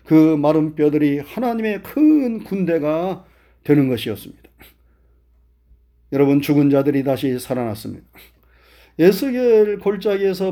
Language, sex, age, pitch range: Korean, male, 40-59, 130-175 Hz